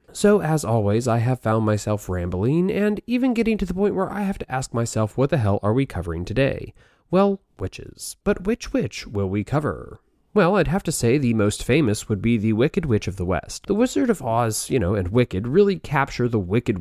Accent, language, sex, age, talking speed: American, English, male, 30-49, 225 wpm